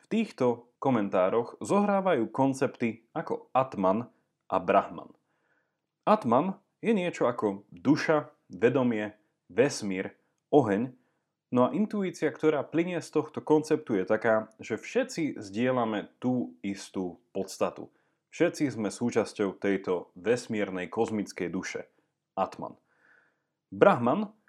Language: Slovak